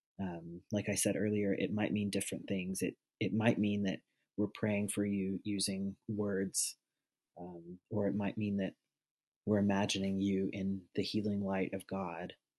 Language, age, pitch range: English, 30-49, 95-110 Hz